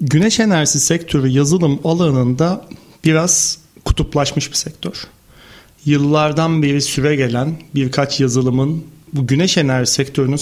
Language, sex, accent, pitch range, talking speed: Turkish, male, native, 135-165 Hz, 110 wpm